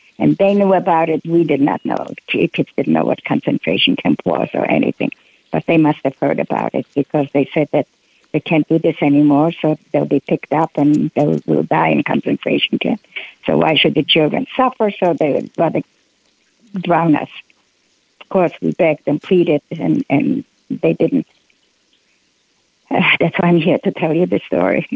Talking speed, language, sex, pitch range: 185 wpm, English, female, 155-180 Hz